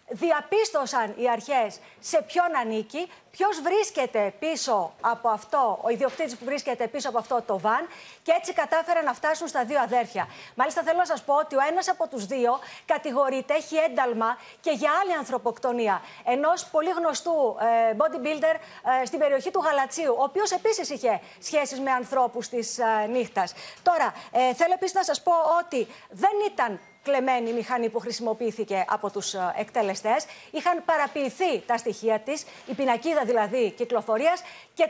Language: Greek